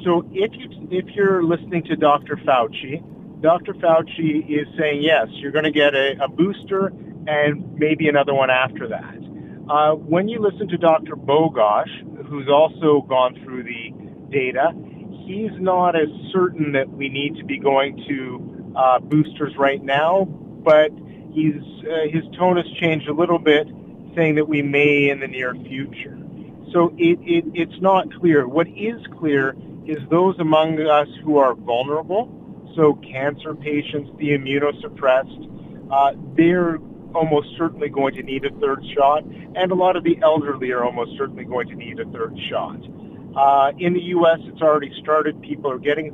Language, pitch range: English, 145-170 Hz